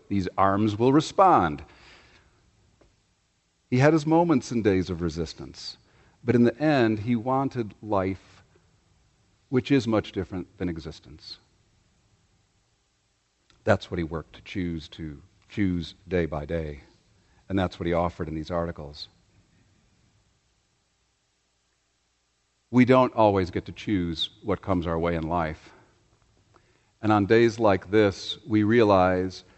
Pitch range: 90-115 Hz